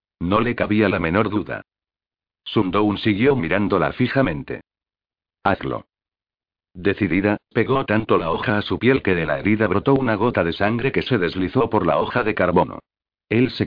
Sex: male